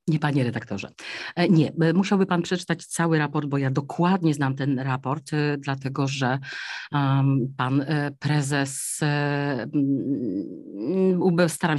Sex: female